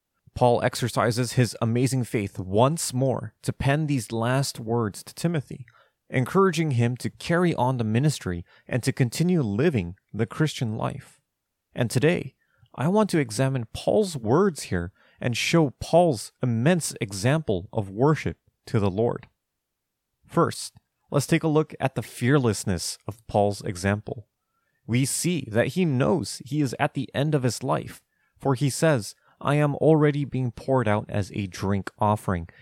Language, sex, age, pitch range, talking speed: English, male, 30-49, 110-145 Hz, 155 wpm